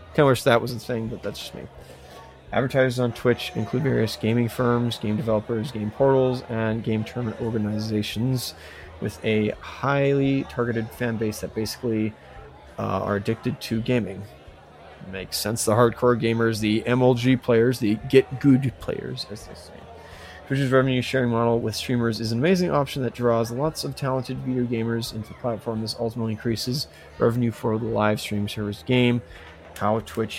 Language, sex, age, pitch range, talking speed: English, male, 30-49, 105-125 Hz, 170 wpm